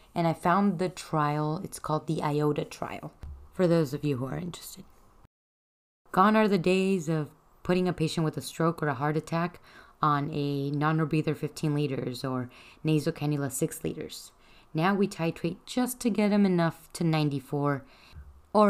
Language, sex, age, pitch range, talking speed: English, female, 20-39, 150-185 Hz, 165 wpm